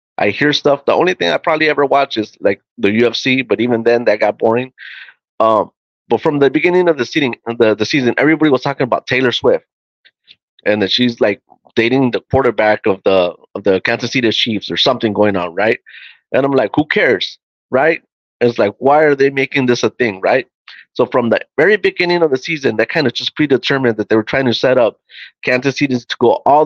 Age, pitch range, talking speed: 30-49, 120-170 Hz, 220 wpm